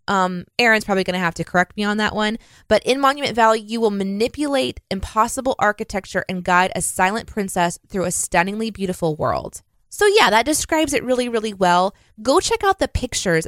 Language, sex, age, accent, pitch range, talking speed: English, female, 20-39, American, 180-250 Hz, 195 wpm